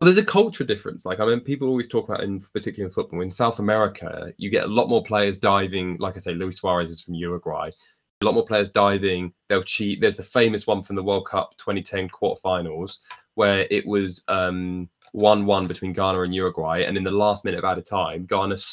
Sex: male